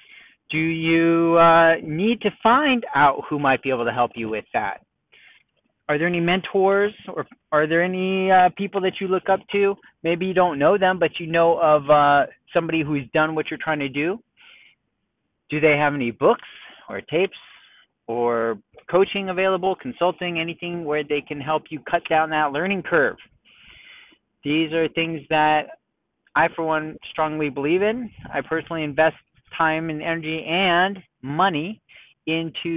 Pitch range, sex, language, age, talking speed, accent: 135-175 Hz, male, English, 40-59, 165 wpm, American